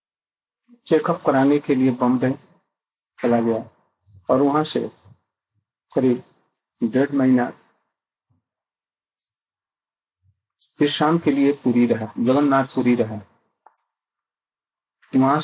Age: 40-59